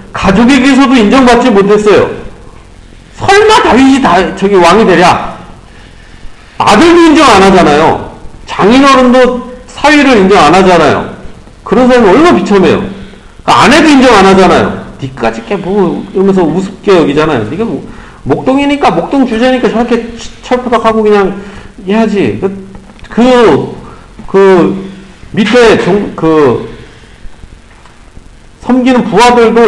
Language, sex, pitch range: Korean, male, 185-245 Hz